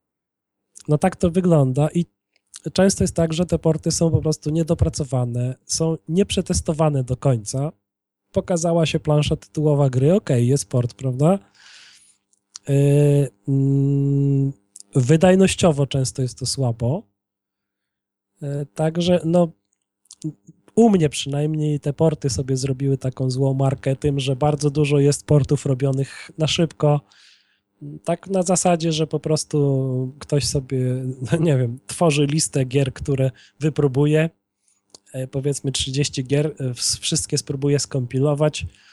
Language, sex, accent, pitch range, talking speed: Polish, male, native, 130-155 Hz, 120 wpm